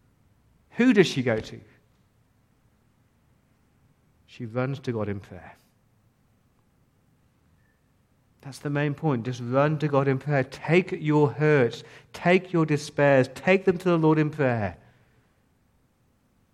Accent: British